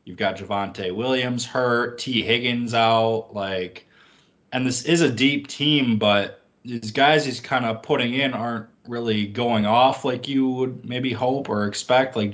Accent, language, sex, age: American, English, male, 20-39